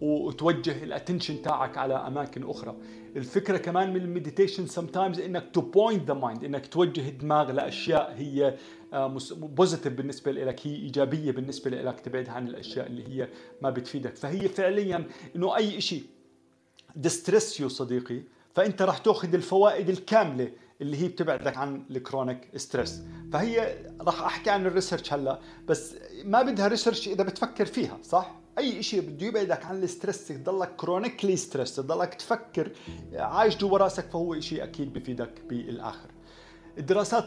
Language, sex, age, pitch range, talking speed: Arabic, male, 40-59, 130-185 Hz, 140 wpm